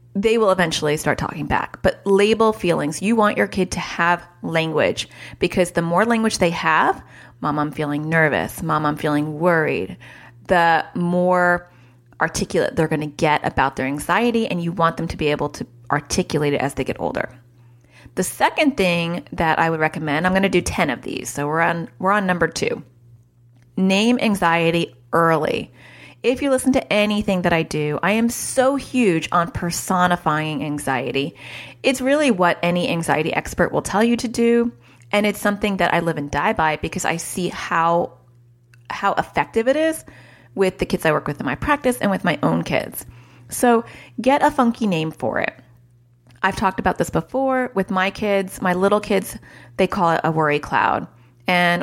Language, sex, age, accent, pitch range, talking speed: English, female, 30-49, American, 150-200 Hz, 185 wpm